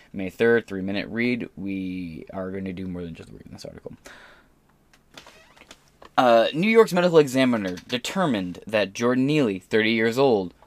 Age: 20-39